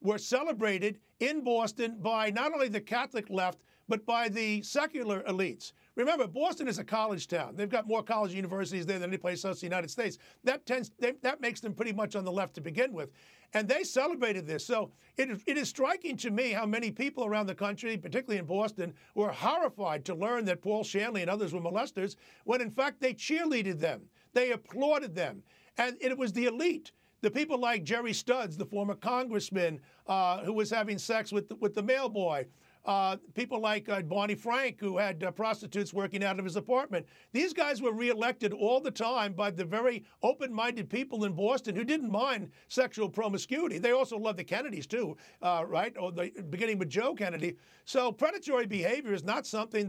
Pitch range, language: 195-245 Hz, English